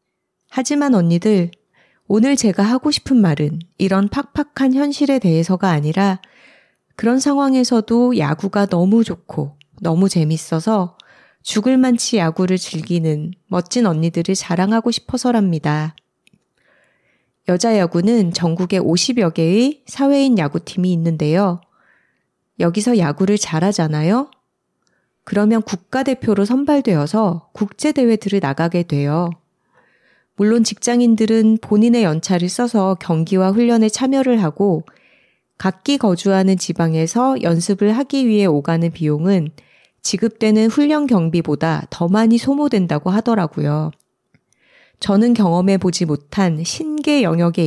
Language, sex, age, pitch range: Korean, female, 30-49, 170-235 Hz